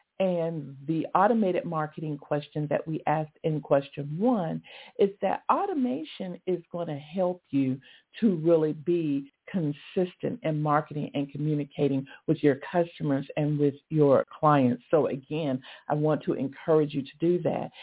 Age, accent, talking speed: 50-69, American, 150 wpm